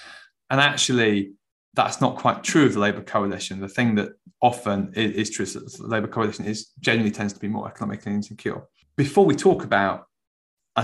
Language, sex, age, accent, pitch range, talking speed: English, male, 20-39, British, 105-120 Hz, 195 wpm